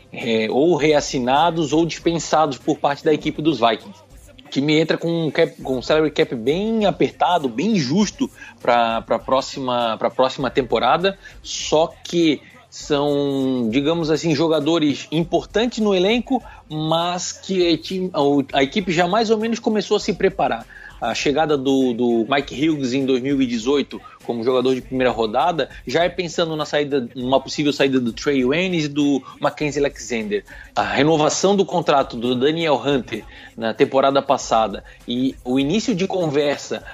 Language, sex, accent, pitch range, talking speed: Portuguese, male, Brazilian, 135-175 Hz, 150 wpm